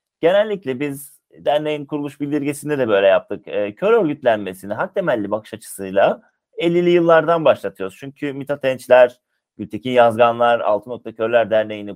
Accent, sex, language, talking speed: native, male, Turkish, 130 wpm